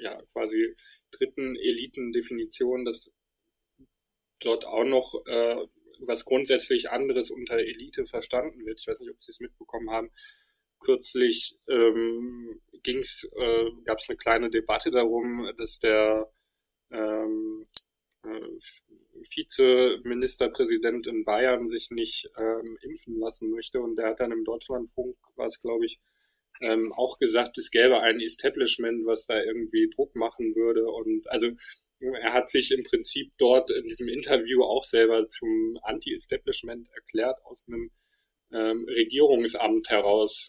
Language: German